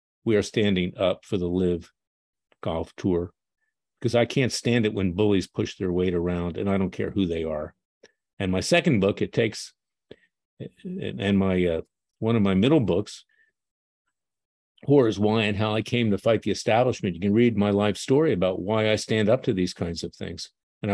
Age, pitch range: 50-69, 95-125 Hz